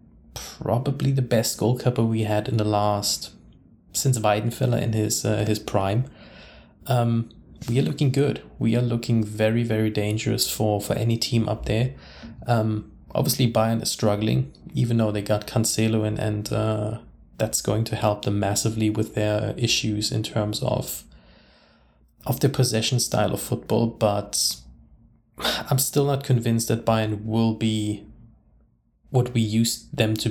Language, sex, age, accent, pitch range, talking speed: English, male, 20-39, German, 105-120 Hz, 155 wpm